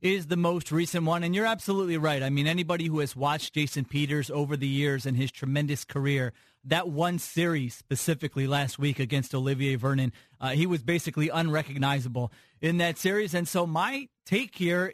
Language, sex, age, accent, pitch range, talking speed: English, male, 30-49, American, 145-175 Hz, 185 wpm